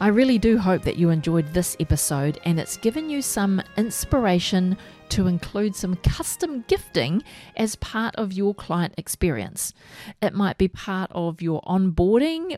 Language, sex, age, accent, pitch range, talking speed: English, female, 40-59, Australian, 170-215 Hz, 160 wpm